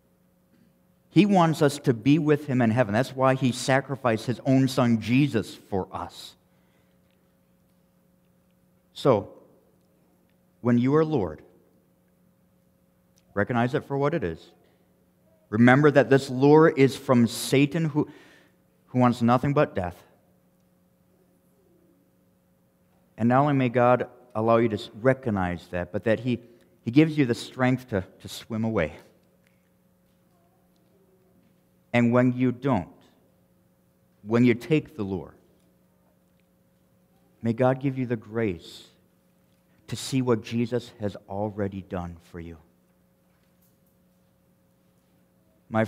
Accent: American